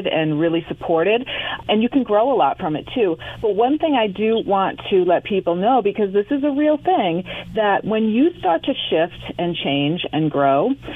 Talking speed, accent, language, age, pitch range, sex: 210 wpm, American, English, 40-59, 165-220 Hz, female